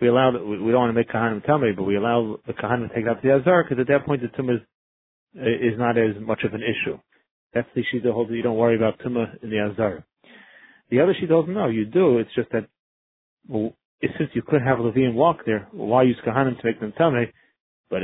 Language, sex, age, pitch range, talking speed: English, male, 40-59, 115-145 Hz, 245 wpm